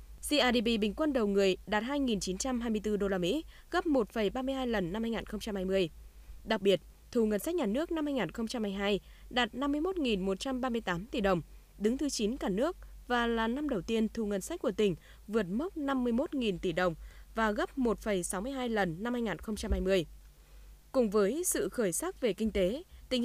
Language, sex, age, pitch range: Vietnamese, female, 20-39, 195-255 Hz